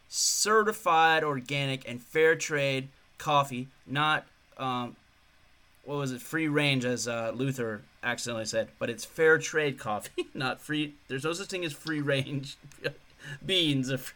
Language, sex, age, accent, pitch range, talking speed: English, male, 30-49, American, 120-170 Hz, 140 wpm